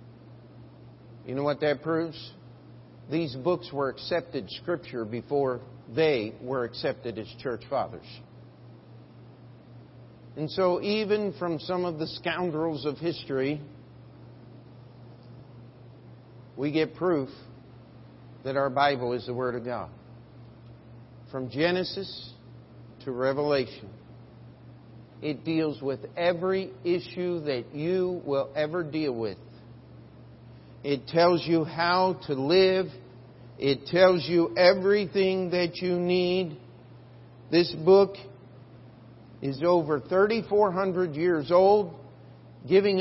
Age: 50-69